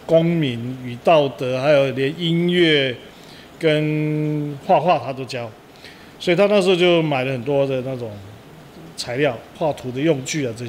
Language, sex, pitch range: Chinese, male, 135-165 Hz